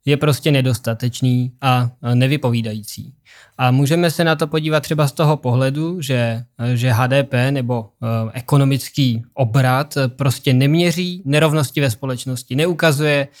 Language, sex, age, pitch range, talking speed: Czech, male, 20-39, 130-155 Hz, 120 wpm